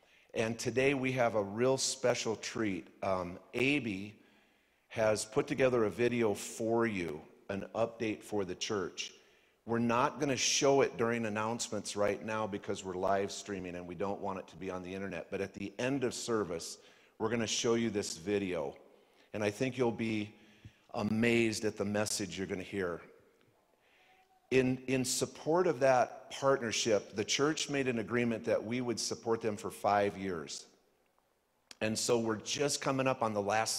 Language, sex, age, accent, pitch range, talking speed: English, male, 50-69, American, 100-120 Hz, 180 wpm